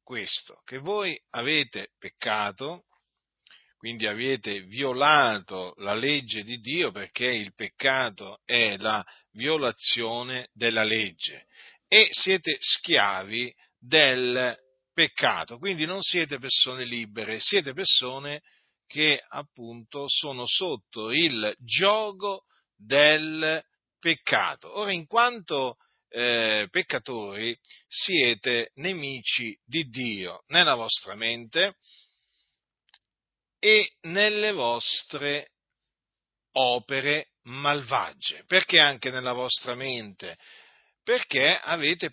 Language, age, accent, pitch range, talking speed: Italian, 40-59, native, 115-160 Hz, 90 wpm